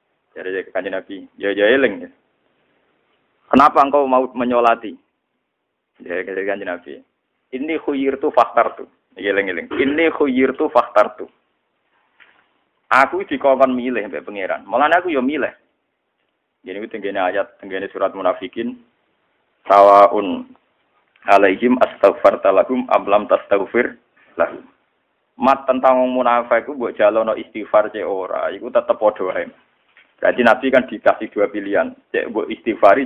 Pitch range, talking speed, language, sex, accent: 130-195 Hz, 115 wpm, Indonesian, male, native